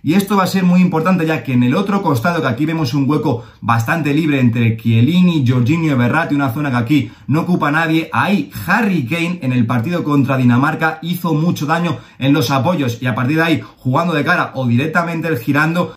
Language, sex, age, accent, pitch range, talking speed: Spanish, male, 30-49, Spanish, 120-160 Hz, 210 wpm